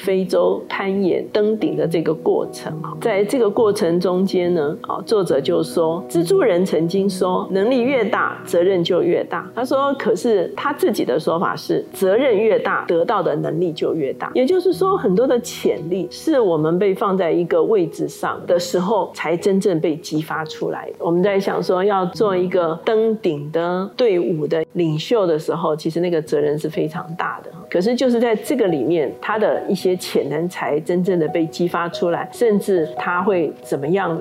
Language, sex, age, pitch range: Chinese, female, 40-59, 175-220 Hz